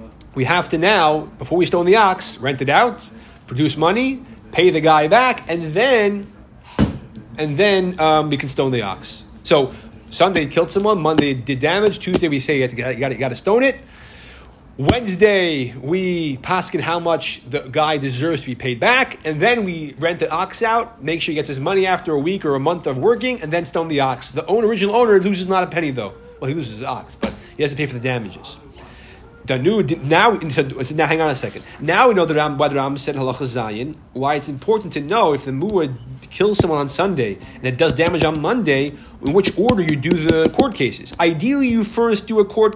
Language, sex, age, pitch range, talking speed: English, male, 30-49, 140-195 Hz, 215 wpm